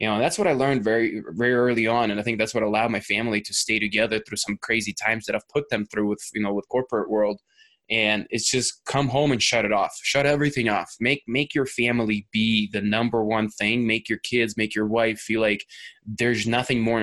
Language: English